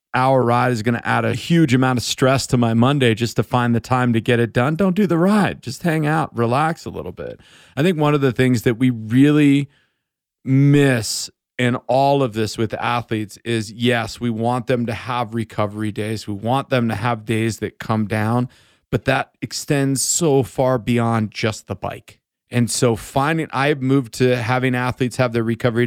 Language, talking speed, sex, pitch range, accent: English, 205 wpm, male, 115-140 Hz, American